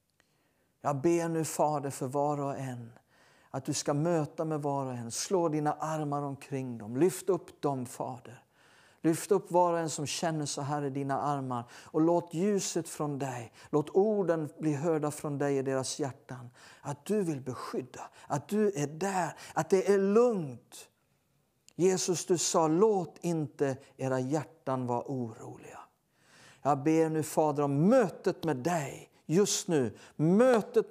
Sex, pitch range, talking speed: male, 135-180 Hz, 160 wpm